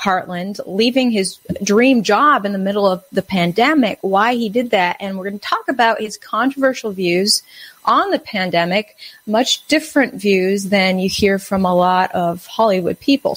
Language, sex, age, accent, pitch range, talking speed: English, female, 30-49, American, 185-230 Hz, 175 wpm